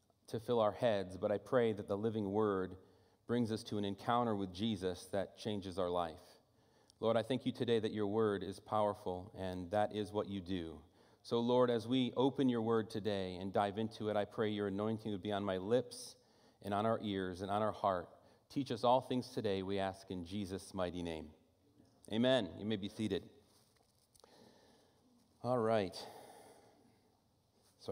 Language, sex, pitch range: English, male, 100-130 Hz